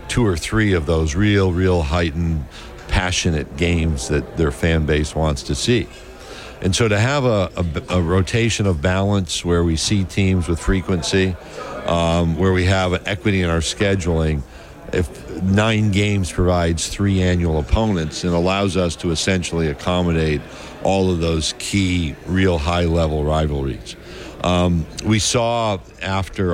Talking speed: 145 wpm